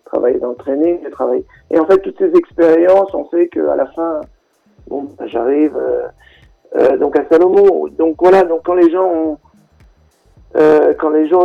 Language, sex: French, male